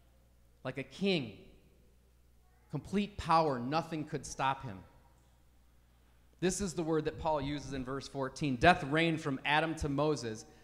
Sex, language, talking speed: male, English, 140 wpm